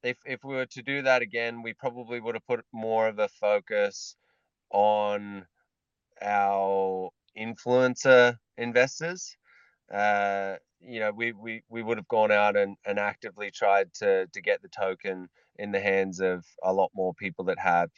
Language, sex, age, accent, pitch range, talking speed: English, male, 20-39, Australian, 95-120 Hz, 165 wpm